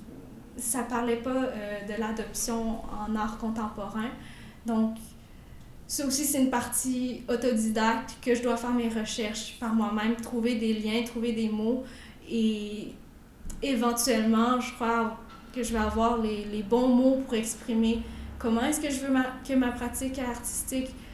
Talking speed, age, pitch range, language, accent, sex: 155 wpm, 20-39, 225-260 Hz, French, Canadian, female